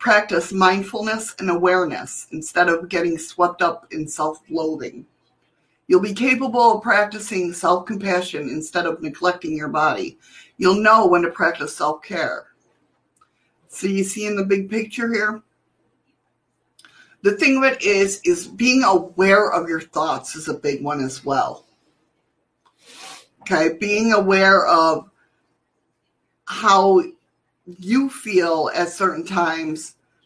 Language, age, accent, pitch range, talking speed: English, 50-69, American, 155-200 Hz, 125 wpm